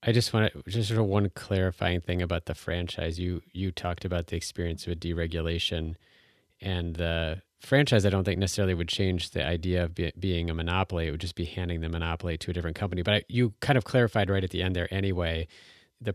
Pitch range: 90-105 Hz